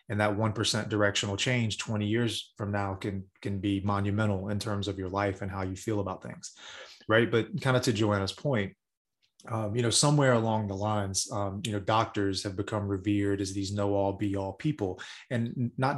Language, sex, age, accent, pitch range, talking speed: English, male, 20-39, American, 100-115 Hz, 195 wpm